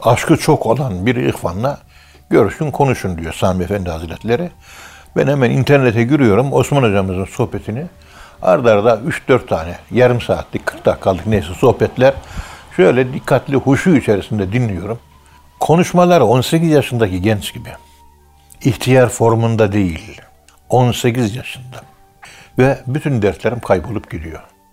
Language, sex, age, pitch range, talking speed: Turkish, male, 60-79, 95-135 Hz, 115 wpm